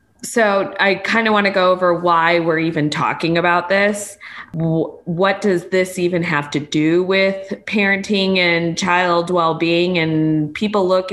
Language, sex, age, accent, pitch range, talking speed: English, female, 20-39, American, 160-185 Hz, 155 wpm